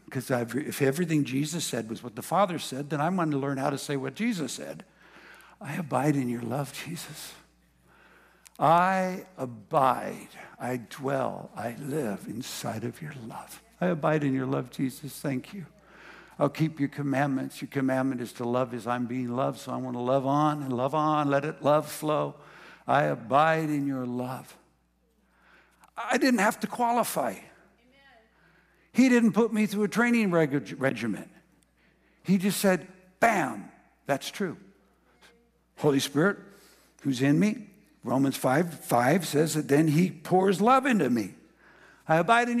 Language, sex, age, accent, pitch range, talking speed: English, male, 60-79, American, 135-195 Hz, 160 wpm